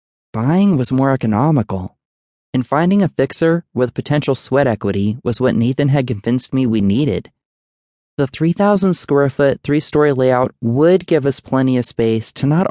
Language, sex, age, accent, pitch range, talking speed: English, male, 20-39, American, 105-135 Hz, 160 wpm